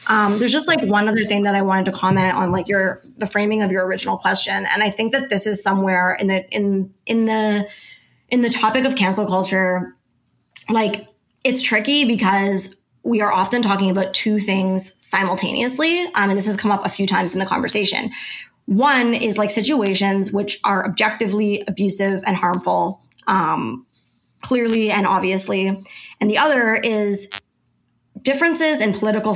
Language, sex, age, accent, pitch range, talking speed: English, female, 20-39, American, 195-240 Hz, 170 wpm